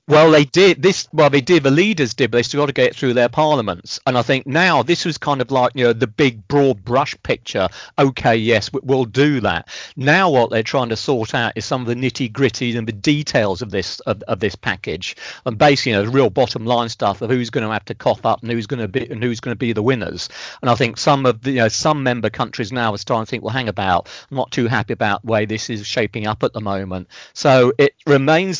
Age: 40-59